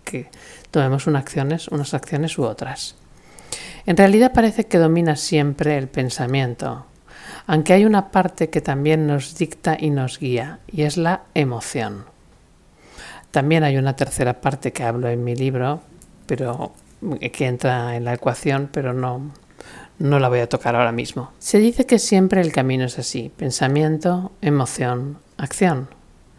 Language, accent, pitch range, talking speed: Spanish, Spanish, 130-170 Hz, 150 wpm